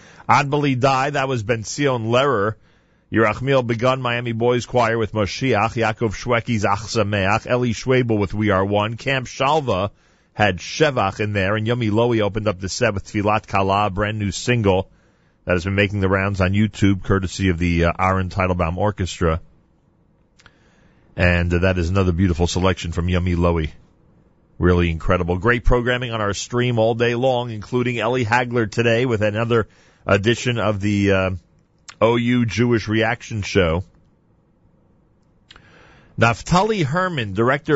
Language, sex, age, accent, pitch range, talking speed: English, male, 40-59, American, 95-120 Hz, 150 wpm